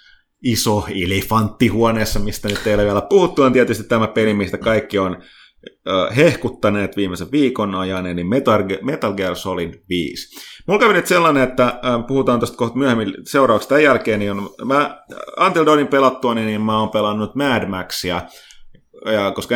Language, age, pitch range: Finnish, 30-49, 100-125 Hz